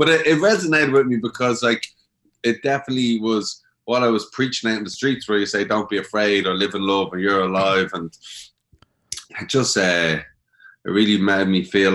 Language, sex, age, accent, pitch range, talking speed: English, male, 20-39, Irish, 85-105 Hz, 205 wpm